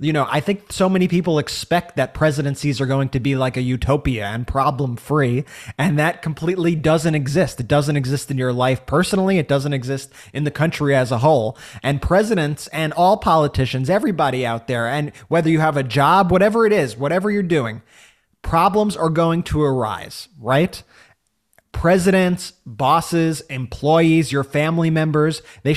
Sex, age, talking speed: male, 20-39, 170 wpm